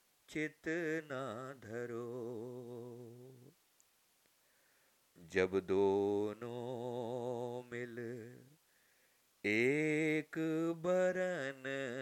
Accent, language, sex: native, Hindi, male